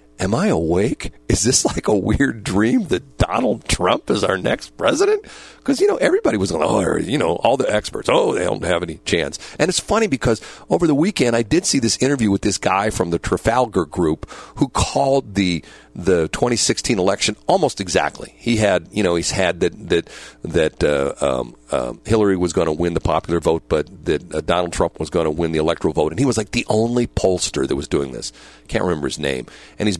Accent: American